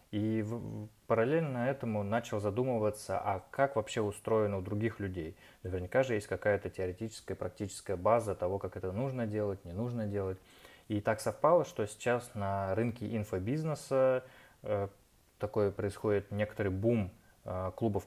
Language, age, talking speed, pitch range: Russian, 20-39, 140 wpm, 95-115 Hz